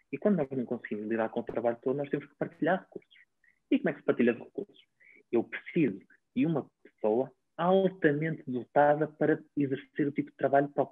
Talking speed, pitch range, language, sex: 200 wpm, 130-160 Hz, Portuguese, male